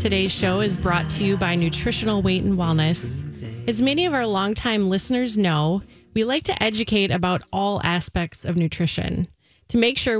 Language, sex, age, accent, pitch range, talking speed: English, female, 30-49, American, 175-225 Hz, 175 wpm